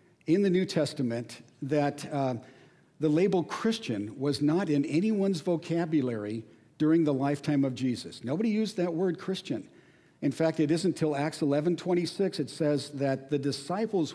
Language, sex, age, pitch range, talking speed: English, male, 60-79, 140-175 Hz, 155 wpm